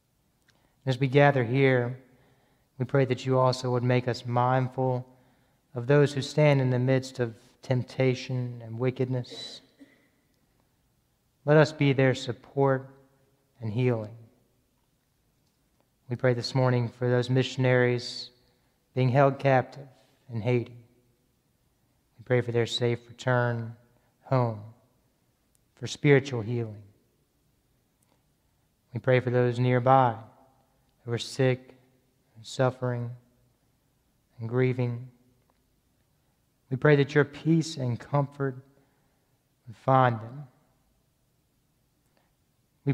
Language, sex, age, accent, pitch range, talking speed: English, male, 30-49, American, 120-135 Hz, 105 wpm